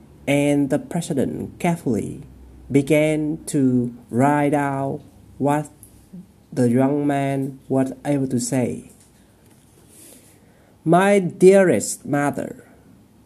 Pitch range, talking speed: 130-155 Hz, 85 wpm